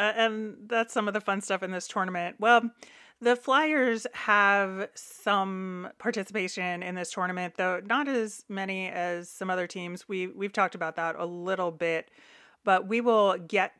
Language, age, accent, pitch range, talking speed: English, 30-49, American, 175-215 Hz, 170 wpm